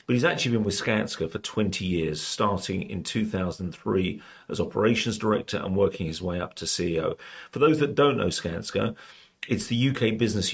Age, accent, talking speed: 40-59, British, 180 wpm